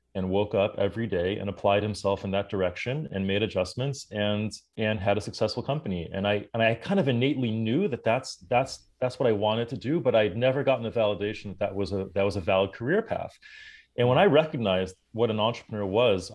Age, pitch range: 30-49, 95-115 Hz